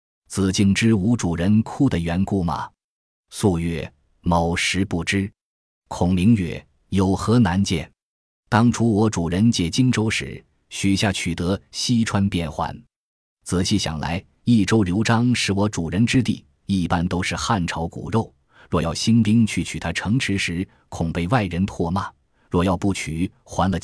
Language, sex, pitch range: Chinese, male, 85-110 Hz